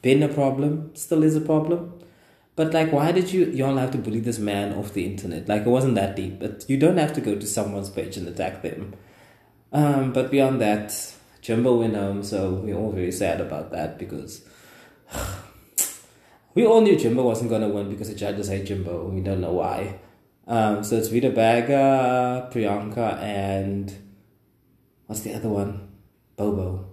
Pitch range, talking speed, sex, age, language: 100-125 Hz, 185 wpm, male, 20-39, English